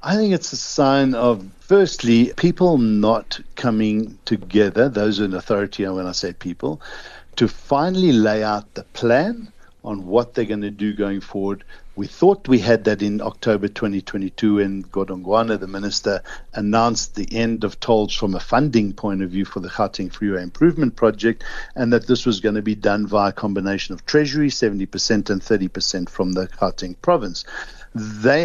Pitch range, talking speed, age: 105-130 Hz, 170 wpm, 60-79